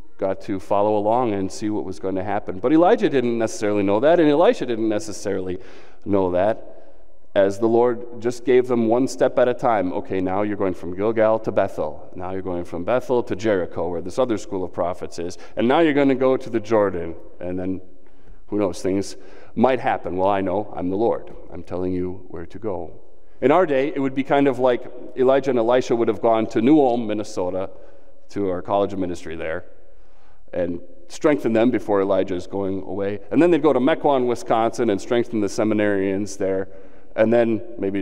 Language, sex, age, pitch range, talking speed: English, male, 30-49, 95-120 Hz, 205 wpm